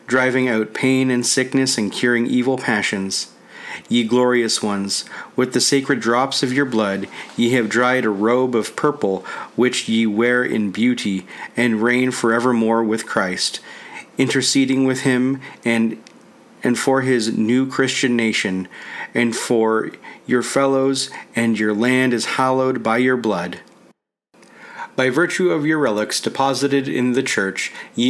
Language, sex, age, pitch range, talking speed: English, male, 40-59, 110-130 Hz, 145 wpm